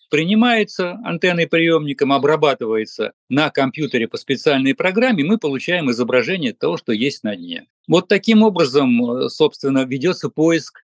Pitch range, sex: 130-210 Hz, male